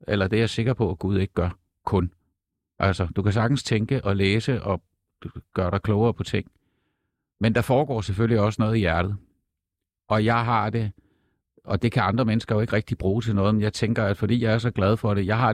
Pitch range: 95-115 Hz